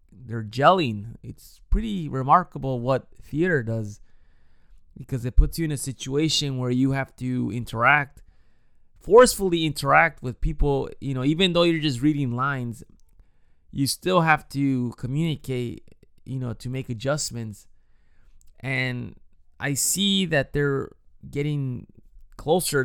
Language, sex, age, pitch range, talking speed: English, male, 20-39, 115-140 Hz, 130 wpm